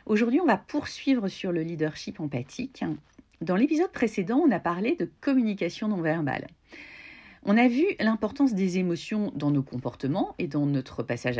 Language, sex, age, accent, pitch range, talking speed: French, female, 40-59, French, 155-230 Hz, 160 wpm